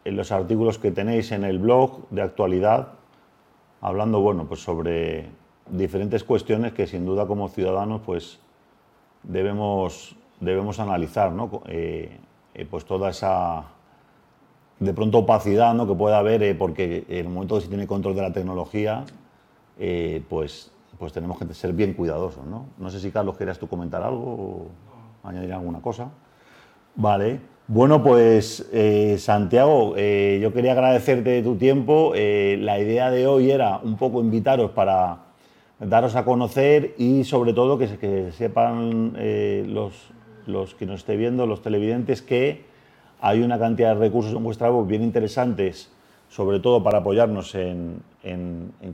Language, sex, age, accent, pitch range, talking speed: Spanish, male, 40-59, Spanish, 95-120 Hz, 160 wpm